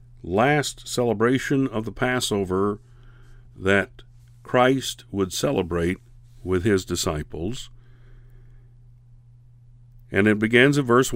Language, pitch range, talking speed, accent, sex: English, 105-125 Hz, 90 wpm, American, male